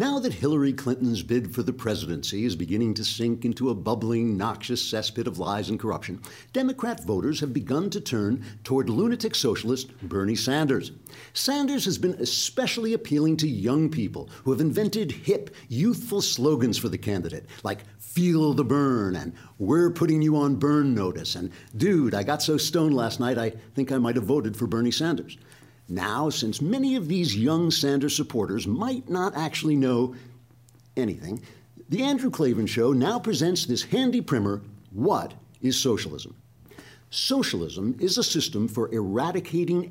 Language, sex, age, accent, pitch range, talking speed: English, male, 60-79, American, 110-155 Hz, 160 wpm